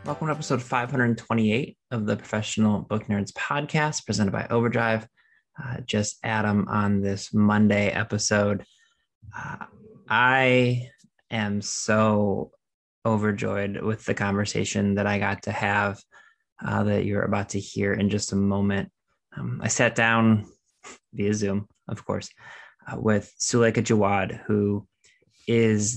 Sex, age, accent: male, 20-39, American